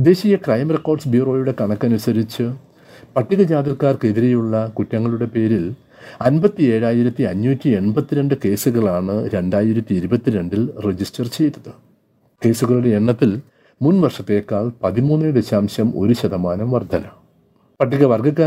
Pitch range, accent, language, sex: 110-140 Hz, native, Malayalam, male